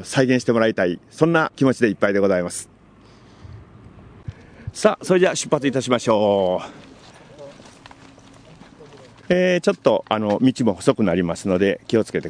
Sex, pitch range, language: male, 105-125 Hz, Japanese